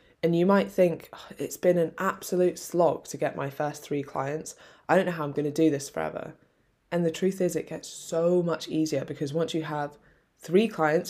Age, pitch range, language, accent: 20-39, 150-175 Hz, English, British